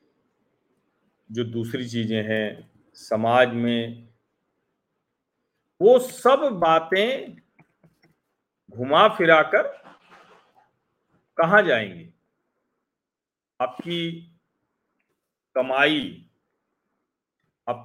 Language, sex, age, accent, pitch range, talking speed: Hindi, male, 40-59, native, 130-190 Hz, 55 wpm